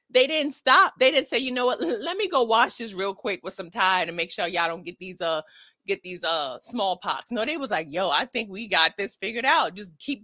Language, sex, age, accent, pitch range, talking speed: English, female, 30-49, American, 195-275 Hz, 265 wpm